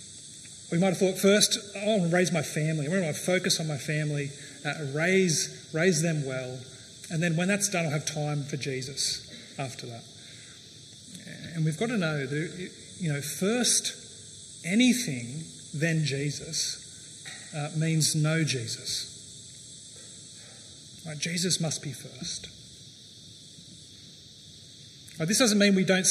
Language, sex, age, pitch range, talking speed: English, male, 30-49, 140-185 Hz, 140 wpm